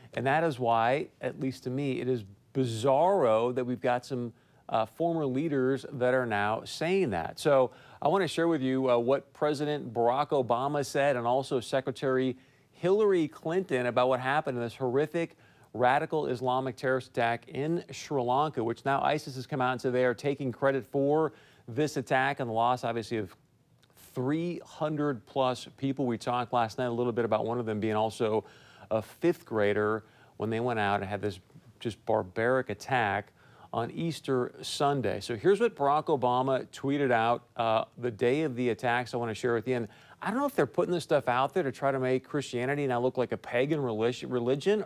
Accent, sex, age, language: American, male, 40-59, English